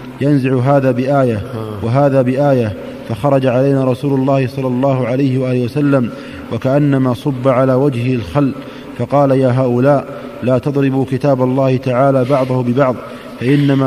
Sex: male